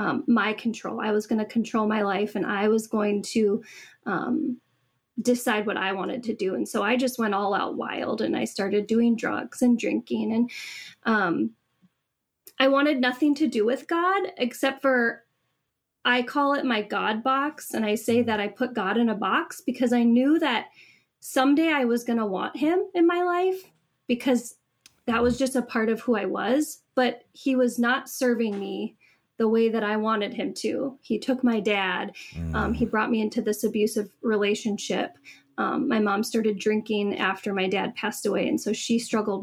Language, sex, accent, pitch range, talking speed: English, female, American, 215-265 Hz, 195 wpm